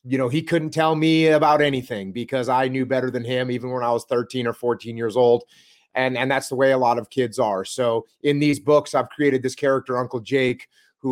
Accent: American